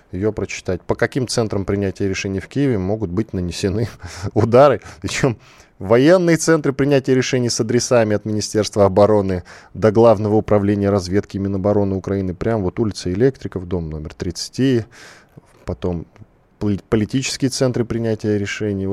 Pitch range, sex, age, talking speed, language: 90-115 Hz, male, 10-29, 135 wpm, Russian